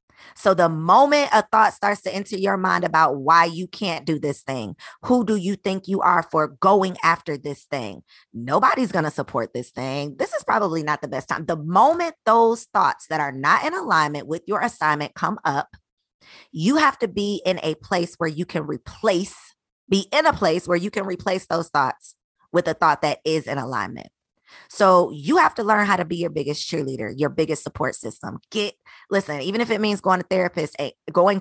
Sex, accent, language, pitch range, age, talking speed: female, American, English, 150-195 Hz, 20-39, 205 wpm